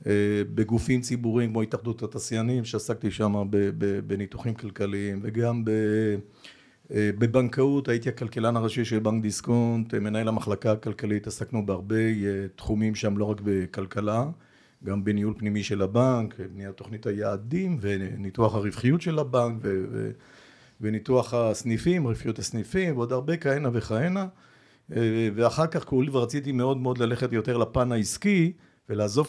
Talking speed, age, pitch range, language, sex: 125 wpm, 50-69, 110-145 Hz, Hebrew, male